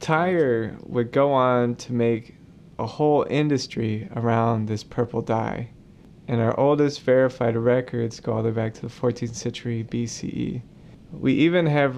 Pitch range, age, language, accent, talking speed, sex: 115-155 Hz, 30-49, English, American, 155 wpm, male